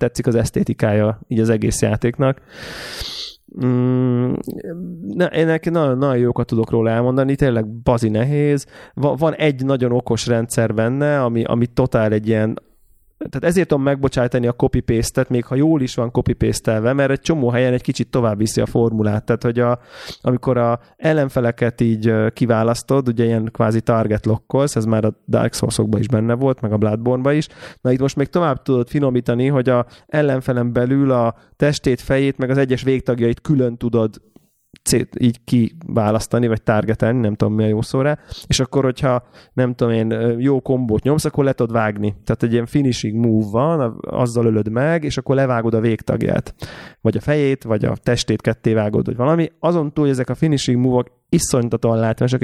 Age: 20-39